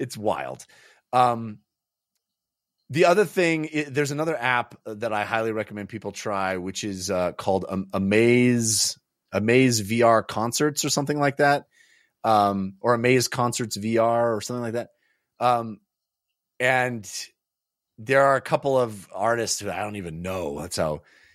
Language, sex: English, male